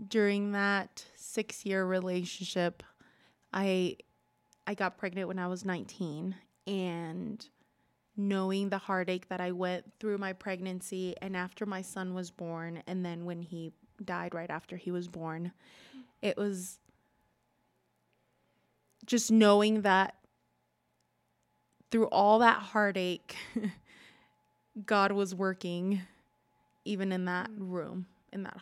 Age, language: 20-39, English